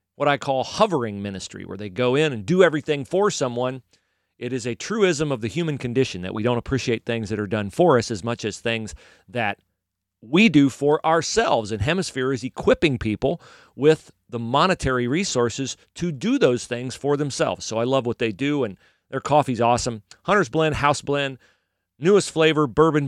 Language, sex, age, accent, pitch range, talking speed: English, male, 40-59, American, 115-160 Hz, 190 wpm